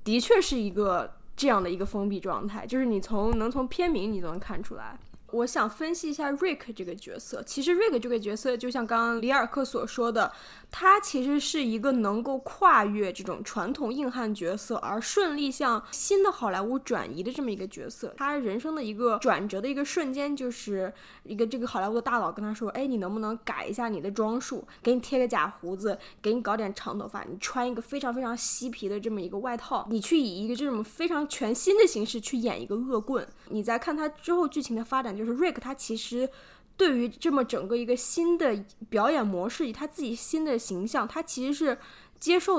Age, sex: 10-29, female